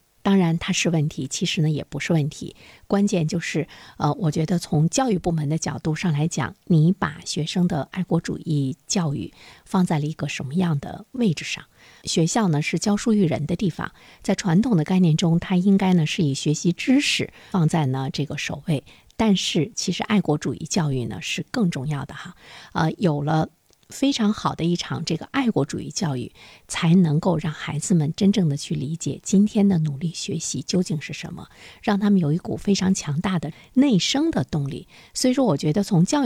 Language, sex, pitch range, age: Chinese, female, 150-195 Hz, 50-69